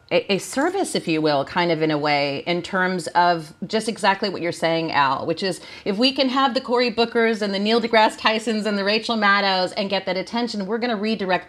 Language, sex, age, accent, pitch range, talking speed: English, female, 40-59, American, 170-230 Hz, 235 wpm